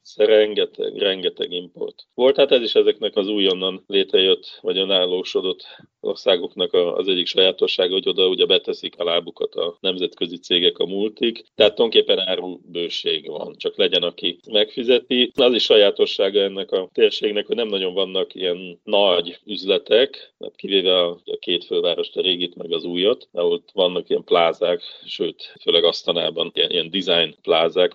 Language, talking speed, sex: Hungarian, 150 wpm, male